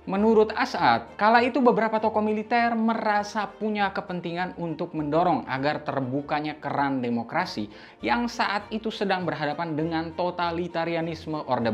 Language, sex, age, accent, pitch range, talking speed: Indonesian, male, 20-39, native, 135-215 Hz, 125 wpm